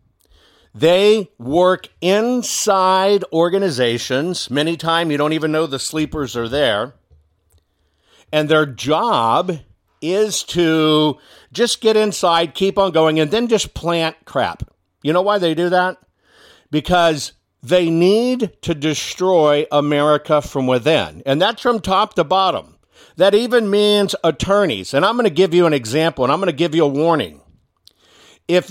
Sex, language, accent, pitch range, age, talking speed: male, English, American, 130-195 Hz, 50-69, 150 wpm